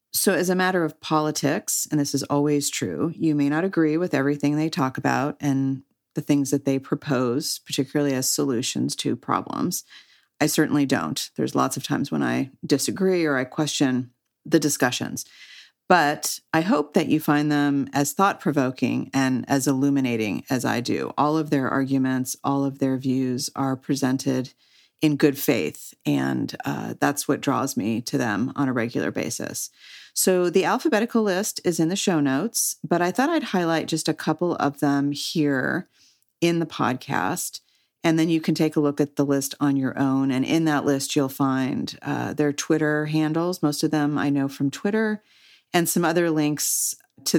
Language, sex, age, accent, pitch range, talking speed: English, female, 40-59, American, 140-165 Hz, 180 wpm